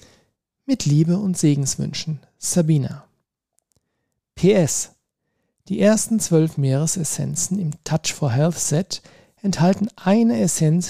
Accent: German